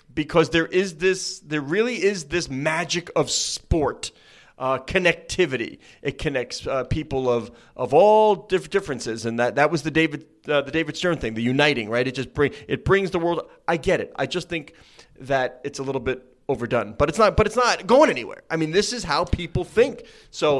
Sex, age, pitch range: male, 30-49, 130-180 Hz